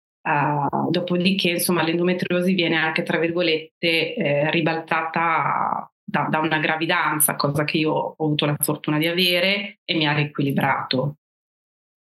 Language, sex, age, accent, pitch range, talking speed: Italian, female, 30-49, native, 150-180 Hz, 135 wpm